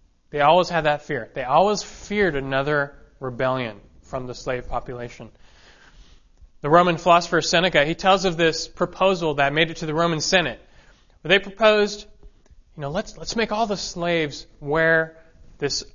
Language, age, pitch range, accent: English, 30-49, 130-190 Hz, American